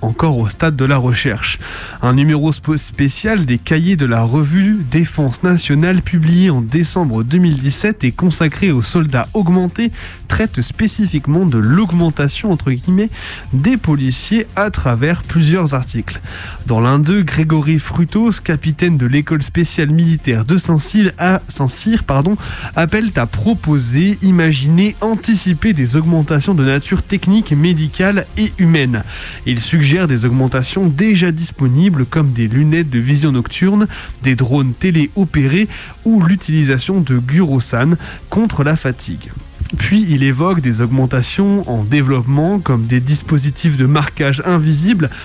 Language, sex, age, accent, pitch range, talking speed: French, male, 20-39, French, 130-180 Hz, 135 wpm